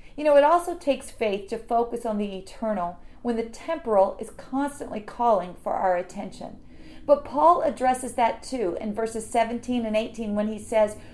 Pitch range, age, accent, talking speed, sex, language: 215-285 Hz, 40-59, American, 180 wpm, female, English